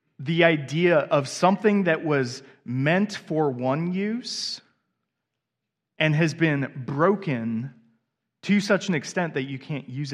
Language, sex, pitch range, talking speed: English, male, 125-165 Hz, 130 wpm